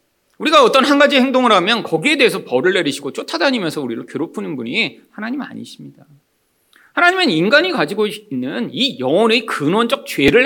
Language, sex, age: Korean, male, 40-59